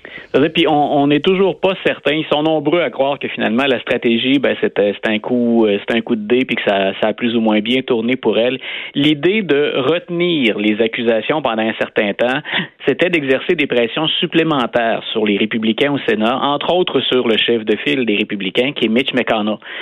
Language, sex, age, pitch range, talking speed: French, male, 30-49, 115-155 Hz, 210 wpm